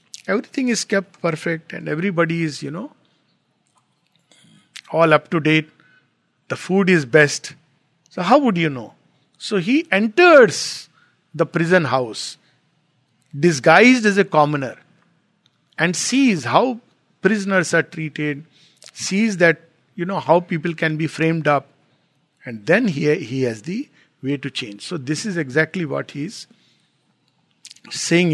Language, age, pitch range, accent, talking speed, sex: English, 50-69, 145-175 Hz, Indian, 140 wpm, male